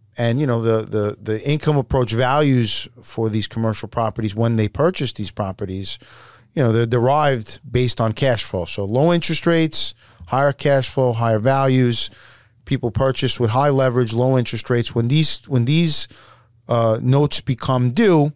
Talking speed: 165 wpm